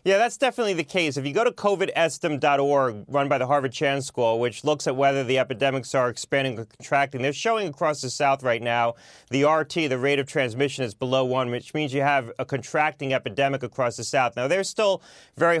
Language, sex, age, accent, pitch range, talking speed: English, male, 30-49, American, 130-155 Hz, 215 wpm